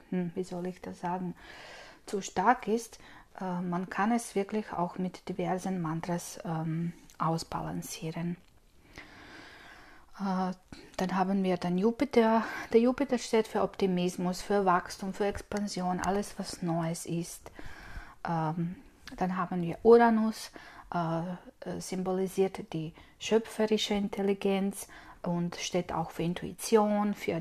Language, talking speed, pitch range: German, 105 wpm, 175-210 Hz